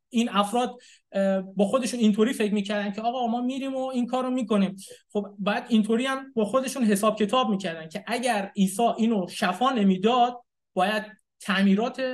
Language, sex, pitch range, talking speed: Persian, male, 195-245 Hz, 160 wpm